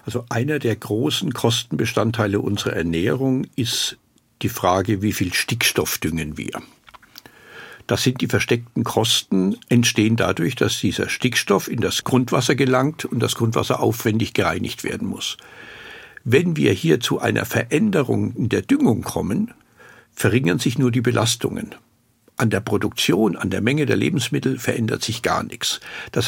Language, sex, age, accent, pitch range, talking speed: German, male, 60-79, German, 105-140 Hz, 145 wpm